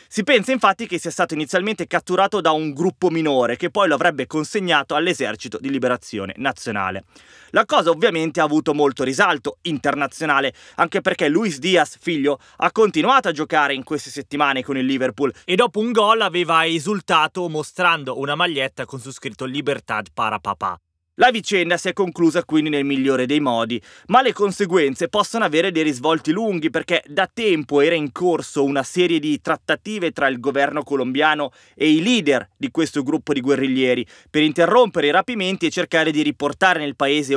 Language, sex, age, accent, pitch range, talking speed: Italian, male, 20-39, native, 135-180 Hz, 175 wpm